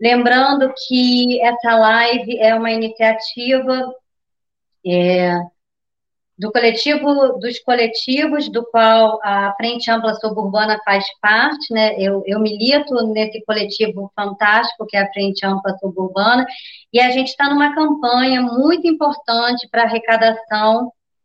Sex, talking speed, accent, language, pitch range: male, 120 wpm, Brazilian, Portuguese, 215-255 Hz